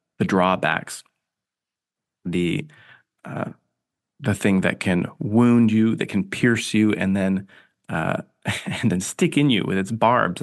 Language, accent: English, American